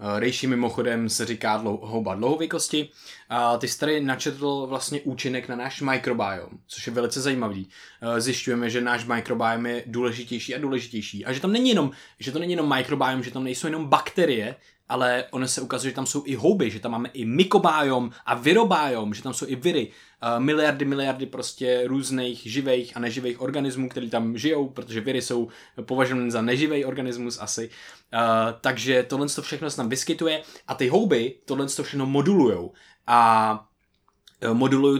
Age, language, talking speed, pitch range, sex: 20-39, Czech, 170 wpm, 120-135 Hz, male